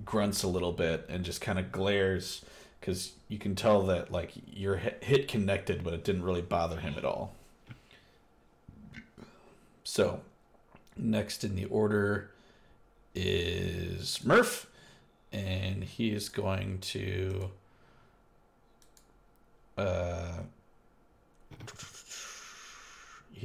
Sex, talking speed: male, 100 wpm